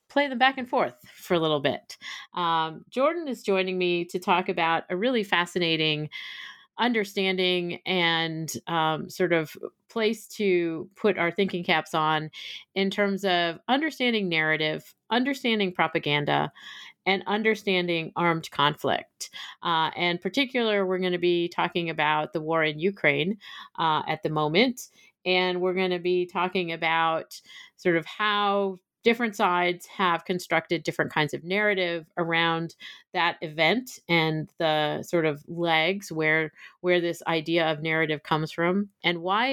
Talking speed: 145 wpm